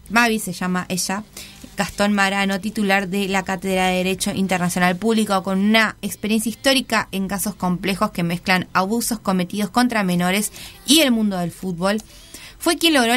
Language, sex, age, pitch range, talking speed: Spanish, female, 20-39, 185-225 Hz, 160 wpm